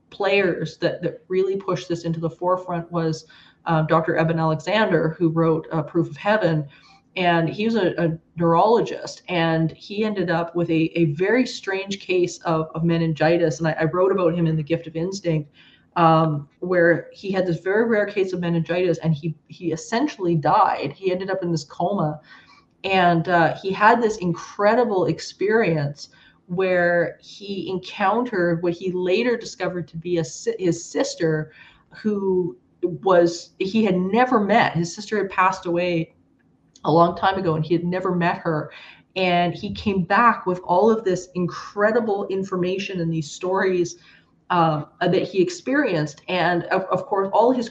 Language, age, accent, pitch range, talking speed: English, 30-49, American, 165-190 Hz, 165 wpm